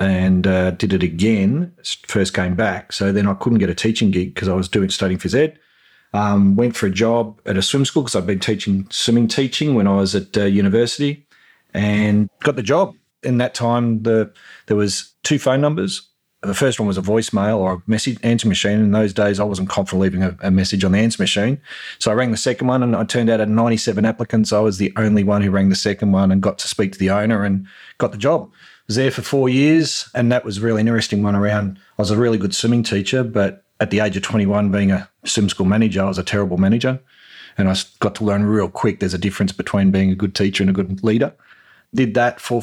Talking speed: 245 wpm